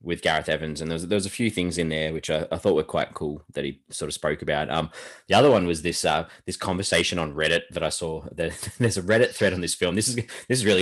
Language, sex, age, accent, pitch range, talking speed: English, male, 10-29, Australian, 85-105 Hz, 295 wpm